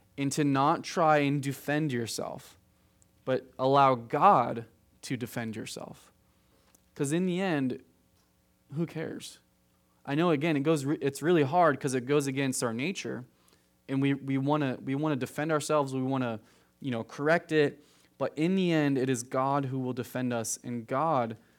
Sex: male